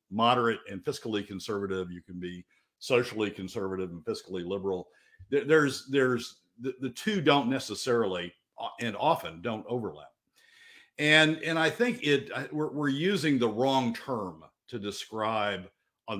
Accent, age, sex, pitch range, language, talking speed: American, 50-69, male, 95-145 Hz, English, 135 wpm